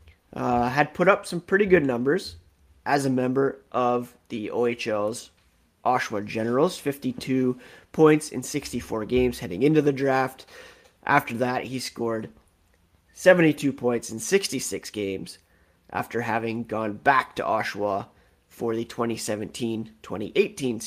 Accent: American